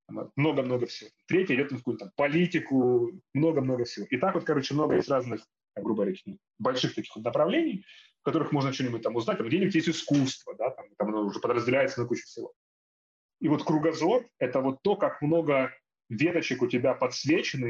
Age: 30-49